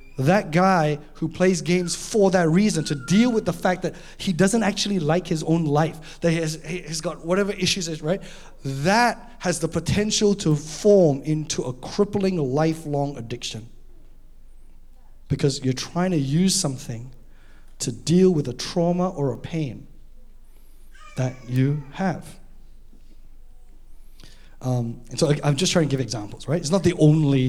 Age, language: 20-39, English